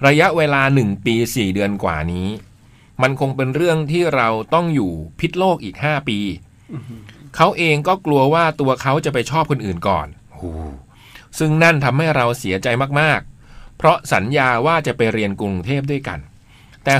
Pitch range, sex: 110-145 Hz, male